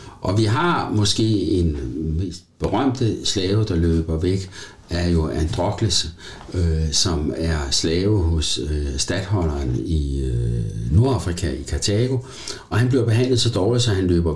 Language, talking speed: Danish, 145 wpm